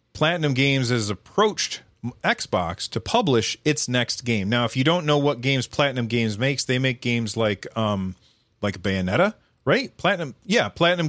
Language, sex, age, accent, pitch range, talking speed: English, male, 40-59, American, 110-140 Hz, 170 wpm